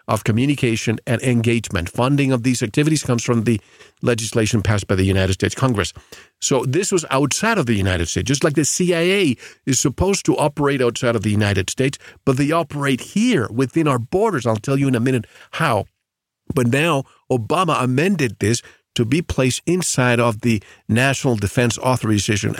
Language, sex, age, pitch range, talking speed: English, male, 50-69, 115-155 Hz, 180 wpm